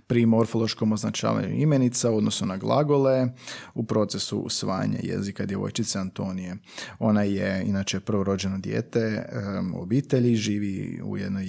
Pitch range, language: 105-130 Hz, Croatian